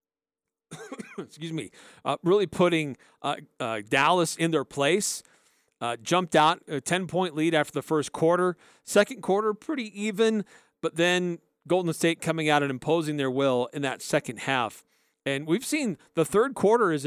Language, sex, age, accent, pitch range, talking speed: English, male, 40-59, American, 140-180 Hz, 160 wpm